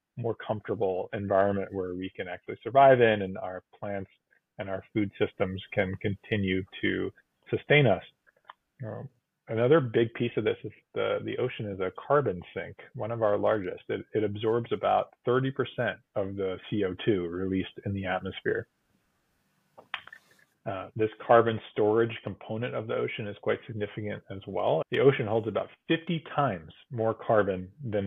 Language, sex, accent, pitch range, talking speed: English, male, American, 100-115 Hz, 155 wpm